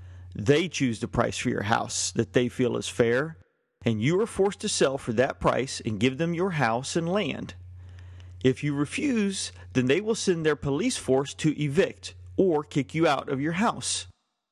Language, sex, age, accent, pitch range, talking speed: English, male, 40-59, American, 110-150 Hz, 195 wpm